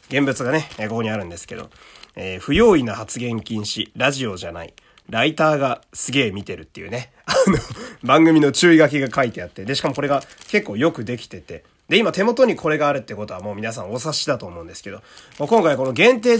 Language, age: Japanese, 30-49